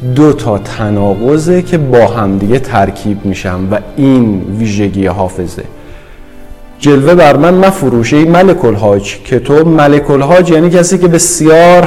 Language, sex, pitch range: Persian, male, 105-165 Hz